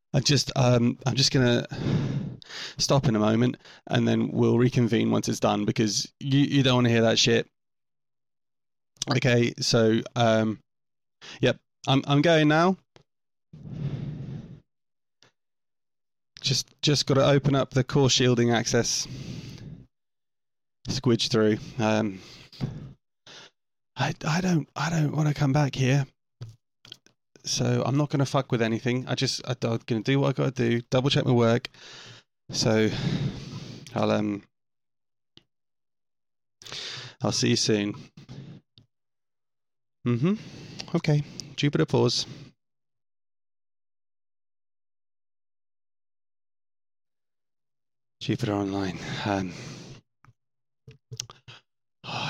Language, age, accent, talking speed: English, 30-49, British, 105 wpm